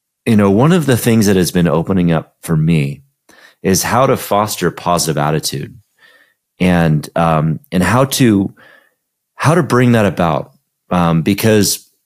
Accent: American